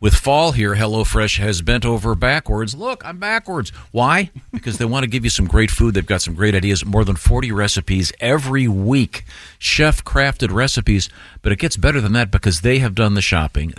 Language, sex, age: English, male, 50-69